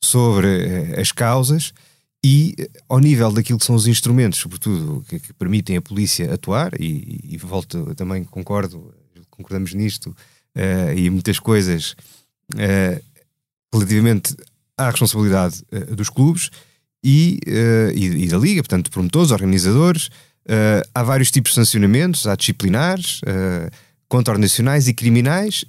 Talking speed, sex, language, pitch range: 140 wpm, male, Portuguese, 105-140 Hz